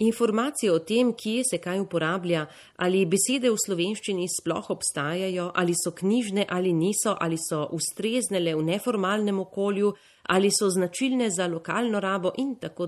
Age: 30-49